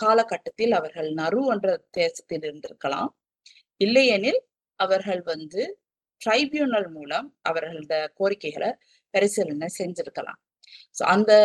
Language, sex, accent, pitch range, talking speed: Tamil, female, native, 175-260 Hz, 85 wpm